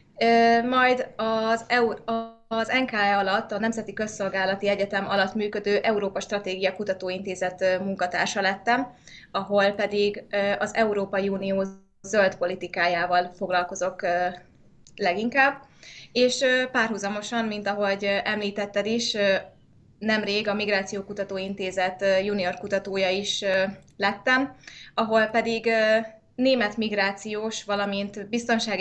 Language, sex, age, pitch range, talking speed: Hungarian, female, 20-39, 190-225 Hz, 95 wpm